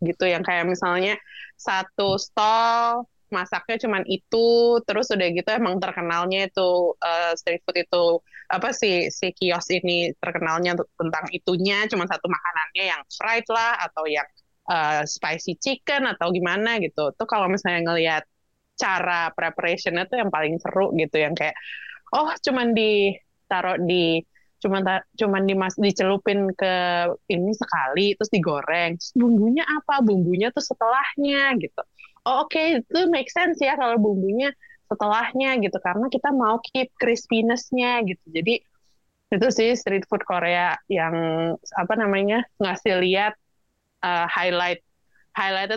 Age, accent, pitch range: 20-39, native, 175-225 Hz